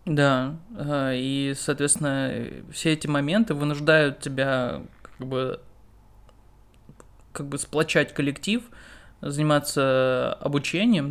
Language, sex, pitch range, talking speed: Russian, male, 135-155 Hz, 85 wpm